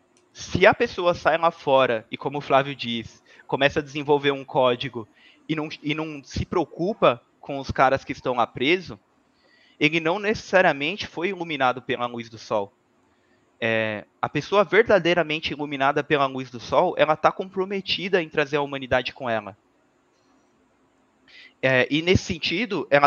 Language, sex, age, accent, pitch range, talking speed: Portuguese, male, 20-39, Brazilian, 130-170 Hz, 160 wpm